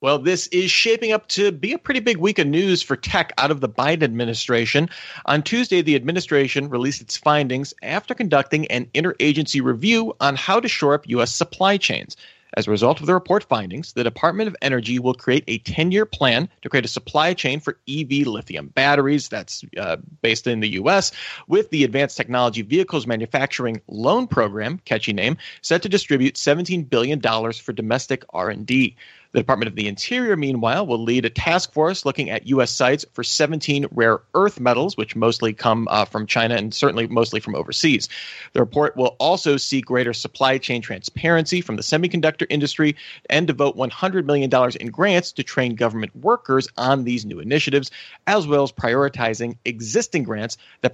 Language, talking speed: English, 180 wpm